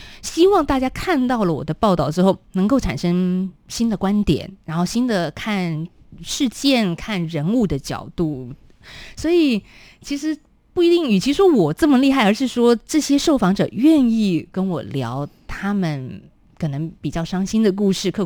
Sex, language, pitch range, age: female, Chinese, 160-225 Hz, 20-39